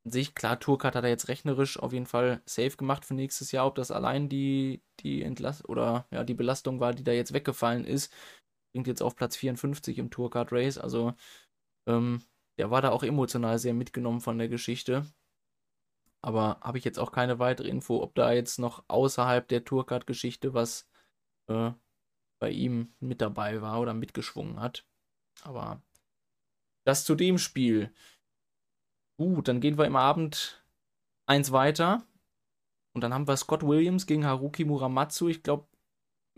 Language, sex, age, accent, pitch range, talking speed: German, male, 20-39, German, 125-150 Hz, 165 wpm